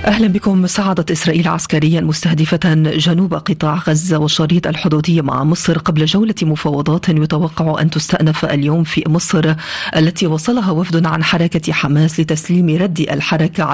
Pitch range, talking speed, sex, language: 155-180 Hz, 135 wpm, female, Arabic